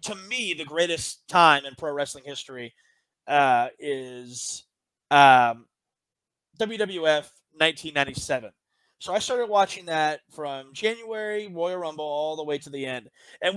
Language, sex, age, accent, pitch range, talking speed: English, male, 20-39, American, 140-175 Hz, 135 wpm